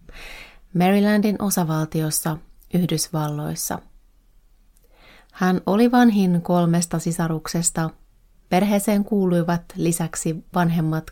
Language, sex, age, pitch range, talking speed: Finnish, female, 30-49, 165-200 Hz, 65 wpm